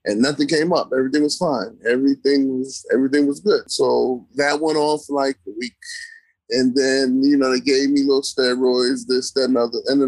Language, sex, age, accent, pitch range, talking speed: English, male, 30-49, American, 130-155 Hz, 195 wpm